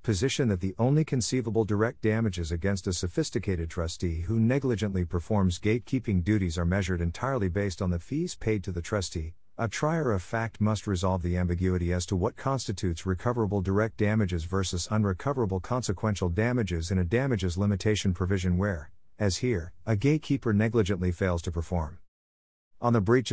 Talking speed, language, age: 160 wpm, English, 50-69